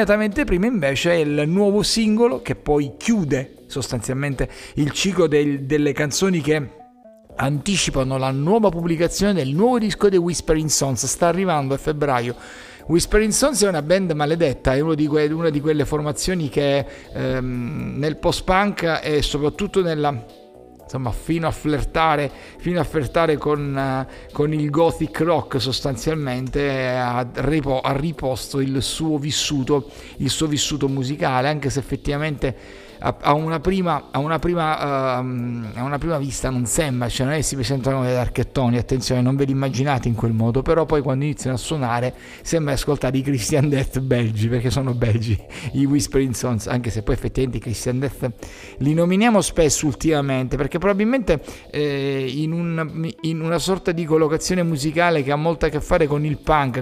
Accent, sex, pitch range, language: native, male, 130-165 Hz, Italian